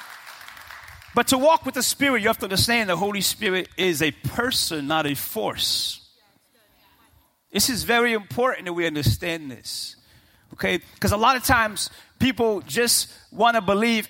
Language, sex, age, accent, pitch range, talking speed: English, male, 30-49, American, 170-245 Hz, 160 wpm